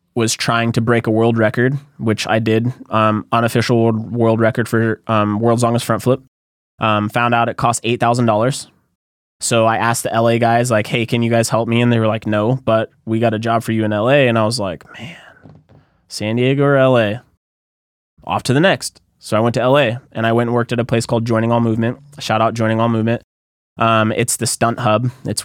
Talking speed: 220 wpm